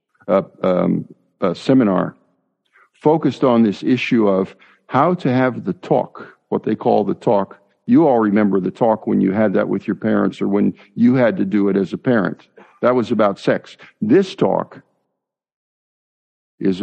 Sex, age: male, 60-79